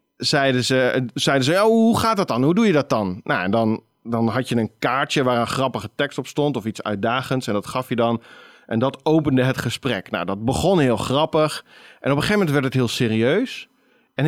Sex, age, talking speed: male, 40-59, 225 wpm